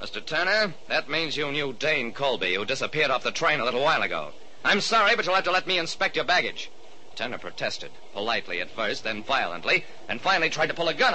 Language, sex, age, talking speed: English, male, 50-69, 225 wpm